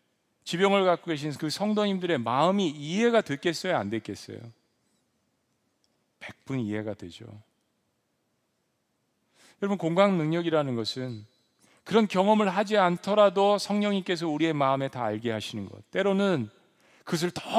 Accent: native